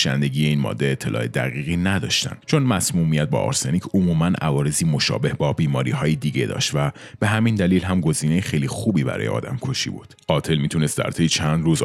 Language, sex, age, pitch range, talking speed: Persian, male, 30-49, 75-105 Hz, 175 wpm